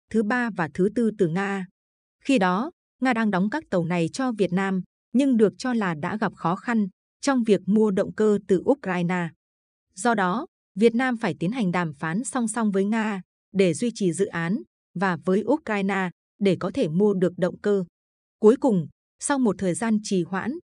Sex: female